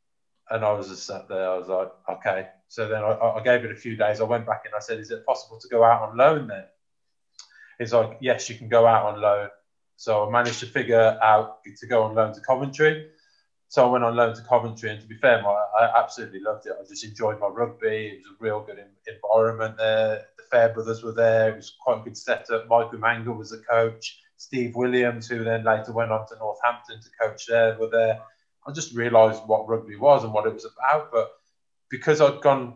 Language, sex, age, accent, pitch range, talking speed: English, male, 20-39, British, 110-130 Hz, 235 wpm